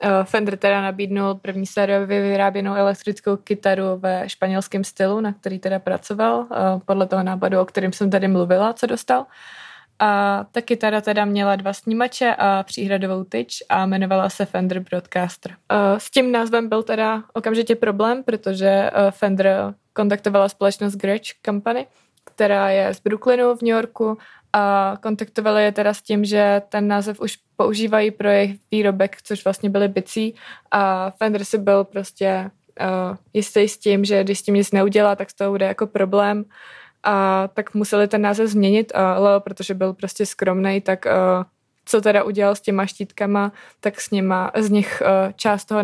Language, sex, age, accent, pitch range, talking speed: Czech, female, 20-39, native, 195-210 Hz, 160 wpm